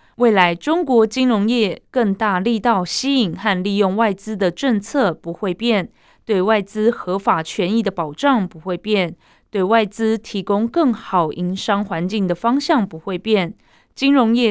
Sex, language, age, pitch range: female, Chinese, 20-39, 185-235 Hz